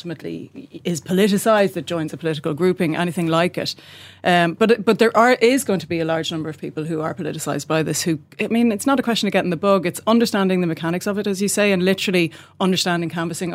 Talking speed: 240 wpm